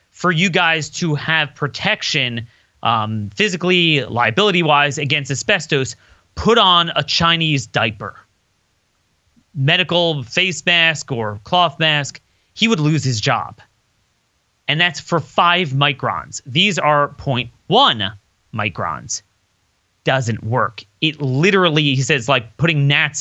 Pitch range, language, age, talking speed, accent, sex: 125-180 Hz, English, 30-49, 115 wpm, American, male